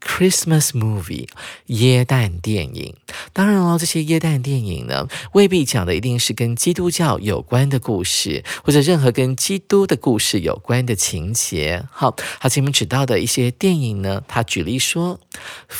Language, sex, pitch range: Chinese, male, 110-155 Hz